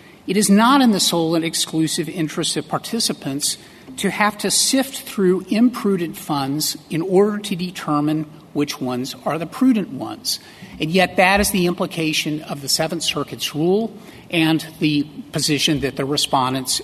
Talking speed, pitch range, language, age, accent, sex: 160 wpm, 150-195 Hz, English, 50-69, American, male